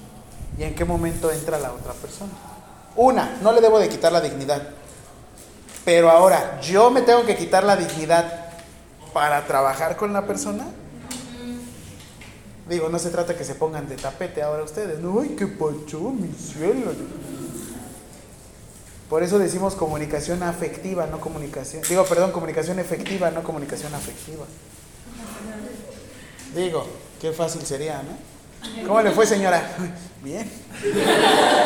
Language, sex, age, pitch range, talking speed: Spanish, male, 30-49, 160-225 Hz, 135 wpm